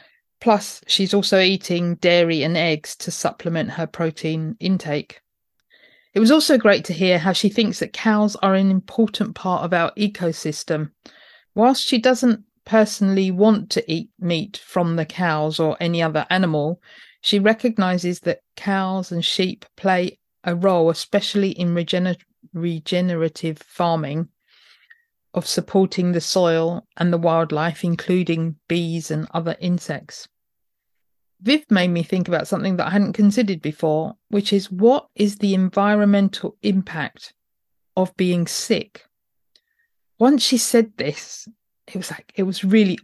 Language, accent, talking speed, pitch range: English, British, 140 wpm, 165-205 Hz